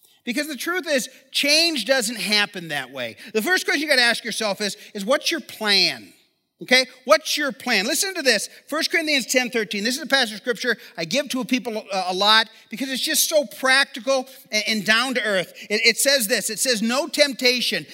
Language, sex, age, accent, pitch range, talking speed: English, male, 40-59, American, 220-285 Hz, 205 wpm